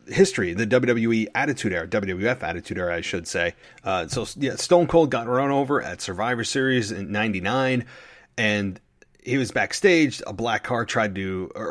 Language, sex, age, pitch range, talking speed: English, male, 30-49, 105-130 Hz, 175 wpm